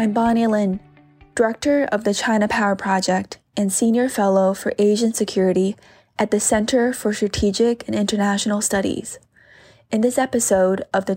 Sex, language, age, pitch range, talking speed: female, English, 20-39, 195-230 Hz, 150 wpm